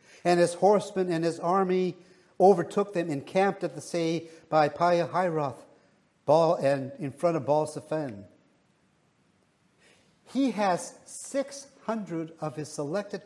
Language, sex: English, male